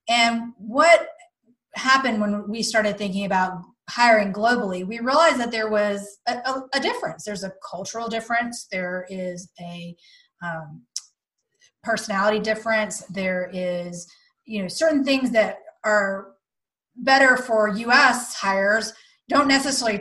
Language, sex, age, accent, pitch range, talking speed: English, female, 30-49, American, 200-245 Hz, 130 wpm